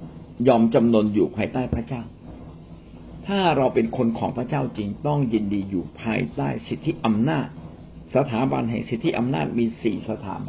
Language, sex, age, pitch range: Thai, male, 60-79, 85-125 Hz